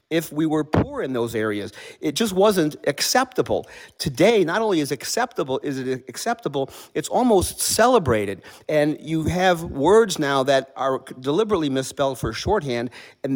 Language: English